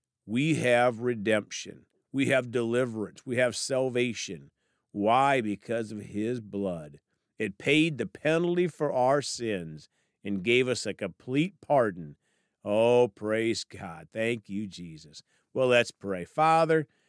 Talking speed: 130 wpm